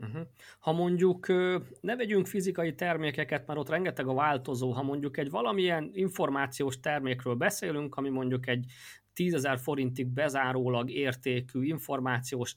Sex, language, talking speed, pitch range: male, Hungarian, 130 wpm, 130-170 Hz